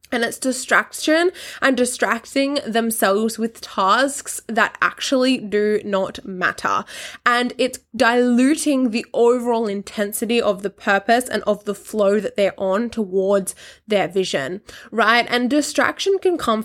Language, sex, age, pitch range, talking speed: English, female, 10-29, 200-245 Hz, 135 wpm